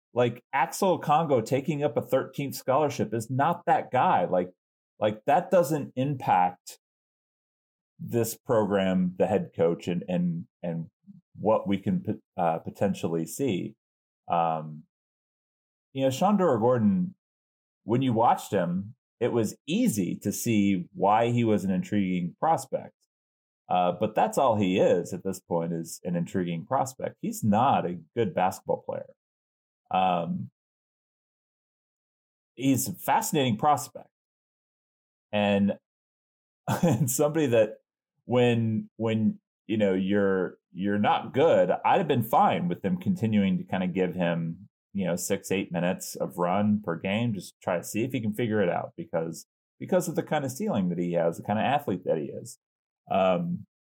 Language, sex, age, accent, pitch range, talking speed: English, male, 30-49, American, 90-135 Hz, 155 wpm